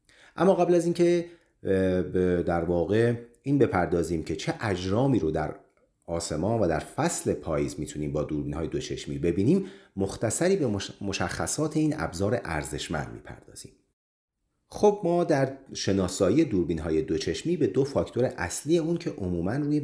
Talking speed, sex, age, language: 145 wpm, male, 40-59, Persian